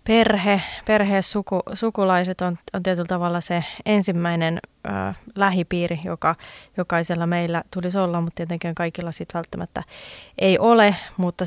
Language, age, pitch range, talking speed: Finnish, 20-39, 170-195 Hz, 120 wpm